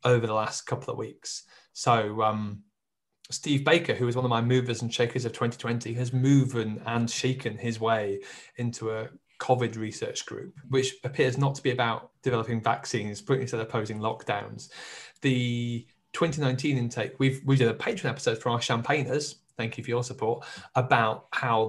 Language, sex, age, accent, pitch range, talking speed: English, male, 20-39, British, 115-130 Hz, 175 wpm